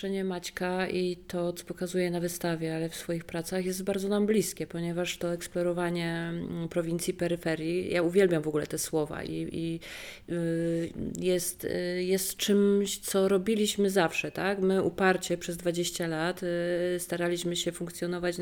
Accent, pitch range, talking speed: native, 170-185 Hz, 140 wpm